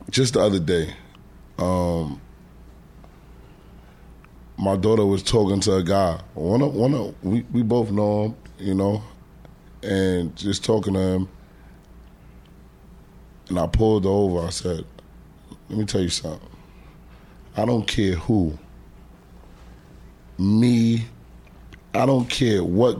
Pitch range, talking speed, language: 95-120 Hz, 130 wpm, English